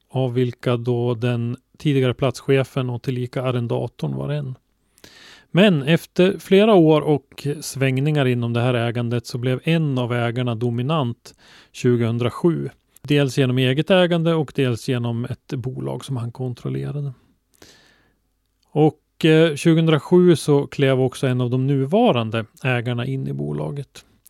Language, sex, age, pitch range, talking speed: Swedish, male, 30-49, 125-145 Hz, 135 wpm